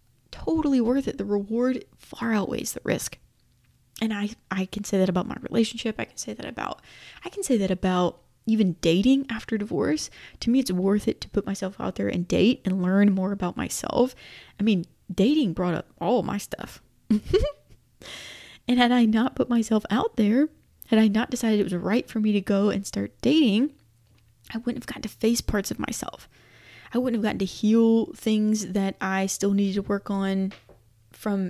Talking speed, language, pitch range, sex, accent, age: 195 wpm, English, 185-235 Hz, female, American, 20-39